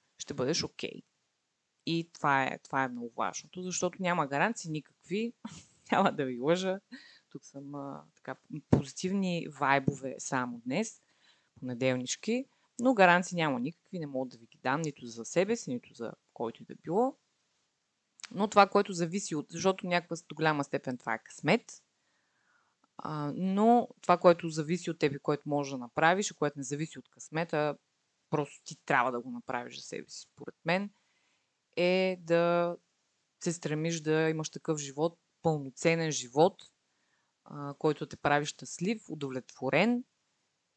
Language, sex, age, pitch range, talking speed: Bulgarian, female, 30-49, 145-185 Hz, 150 wpm